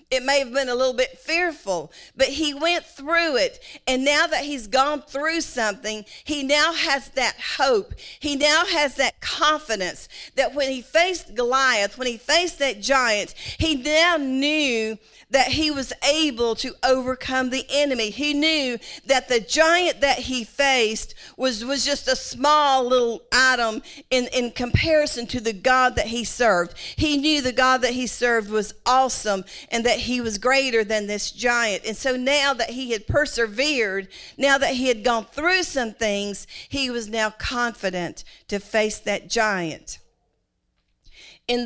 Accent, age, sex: American, 40-59, female